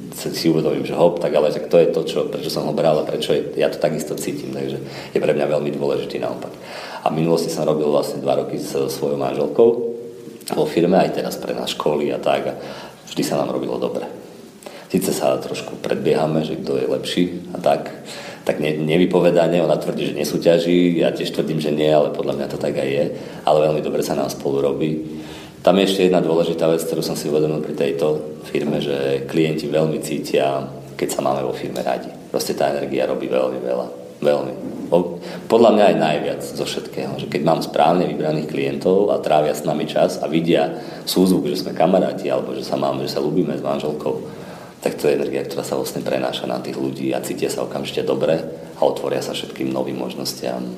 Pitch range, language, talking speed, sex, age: 65-85 Hz, Slovak, 205 wpm, male, 40-59